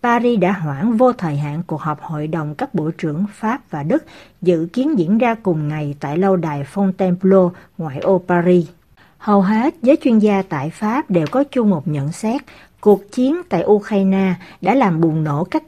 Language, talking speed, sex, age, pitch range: Vietnamese, 195 wpm, female, 60-79, 165-225 Hz